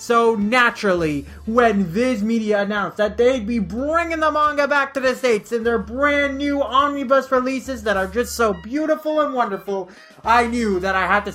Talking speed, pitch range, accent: 185 wpm, 210-255 Hz, American